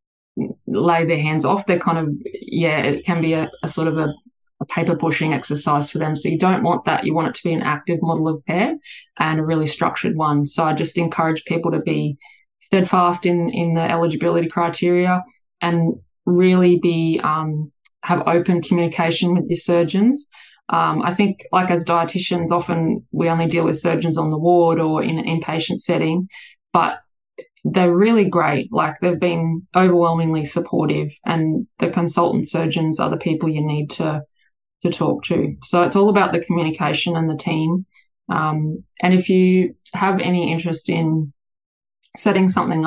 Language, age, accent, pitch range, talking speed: English, 20-39, Australian, 160-180 Hz, 175 wpm